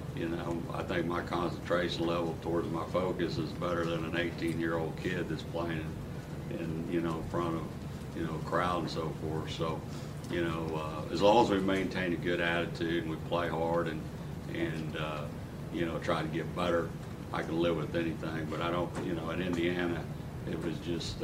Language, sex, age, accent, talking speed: English, male, 60-79, American, 205 wpm